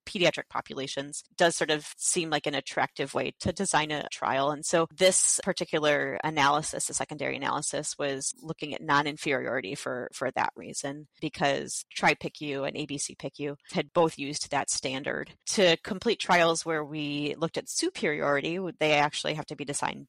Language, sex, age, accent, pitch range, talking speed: English, female, 30-49, American, 145-165 Hz, 160 wpm